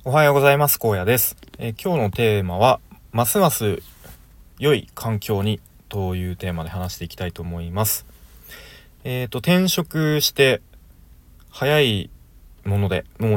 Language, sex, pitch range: Japanese, male, 85-115 Hz